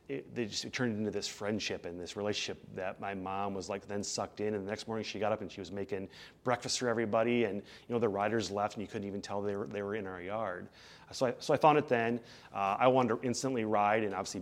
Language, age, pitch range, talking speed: English, 30-49, 95-105 Hz, 275 wpm